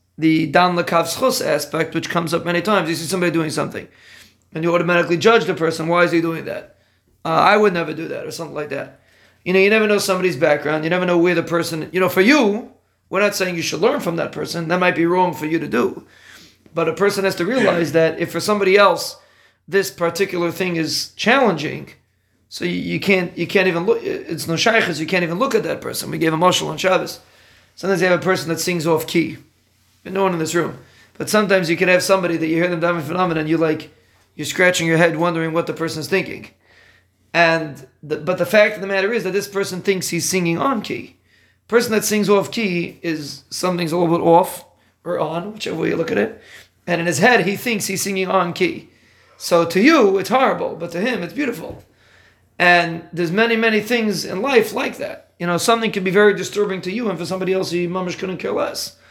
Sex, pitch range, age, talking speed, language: male, 165-195 Hz, 30-49, 230 wpm, English